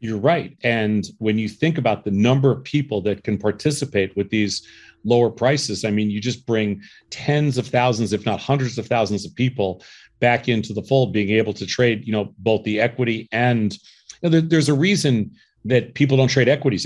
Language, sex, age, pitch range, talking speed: English, male, 40-59, 115-155 Hz, 195 wpm